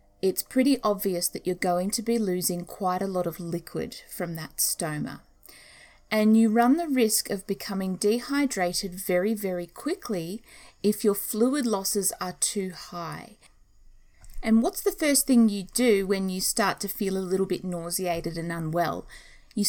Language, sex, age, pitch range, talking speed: English, female, 30-49, 175-225 Hz, 165 wpm